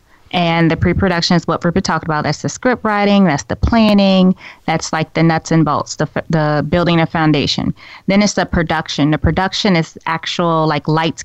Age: 20-39